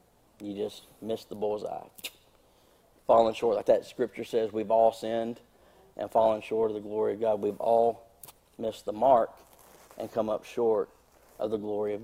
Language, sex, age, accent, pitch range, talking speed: English, male, 40-59, American, 110-140 Hz, 175 wpm